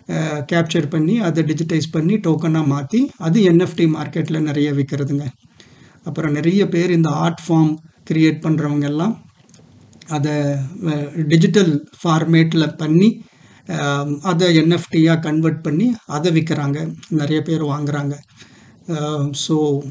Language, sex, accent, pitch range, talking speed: Tamil, male, native, 145-170 Hz, 100 wpm